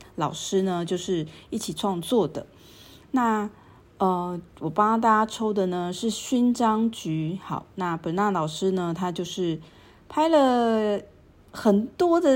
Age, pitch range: 30-49, 170-220 Hz